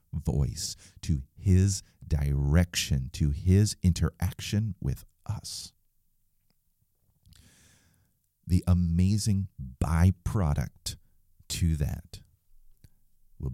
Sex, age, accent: male, 40-59, American